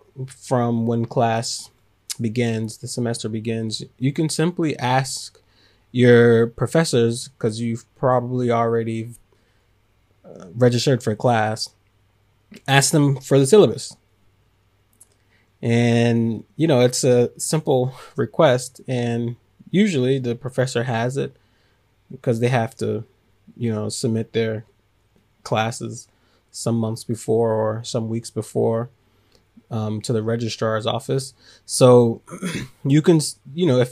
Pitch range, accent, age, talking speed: 110-130 Hz, American, 20-39, 115 wpm